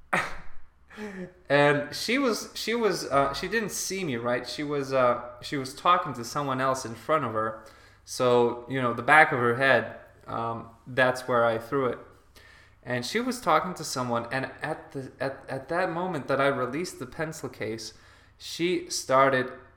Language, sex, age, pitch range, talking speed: English, male, 20-39, 115-140 Hz, 180 wpm